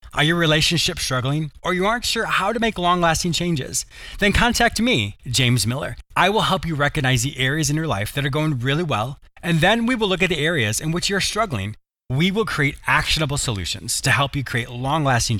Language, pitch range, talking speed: English, 115-175 Hz, 215 wpm